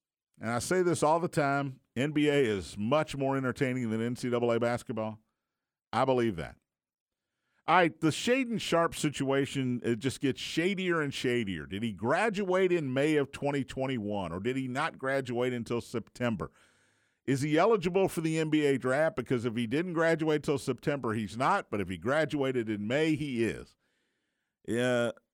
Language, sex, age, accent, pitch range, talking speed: English, male, 50-69, American, 125-165 Hz, 160 wpm